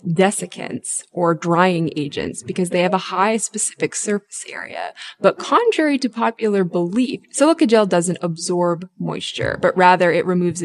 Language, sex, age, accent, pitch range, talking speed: English, female, 20-39, American, 175-225 Hz, 145 wpm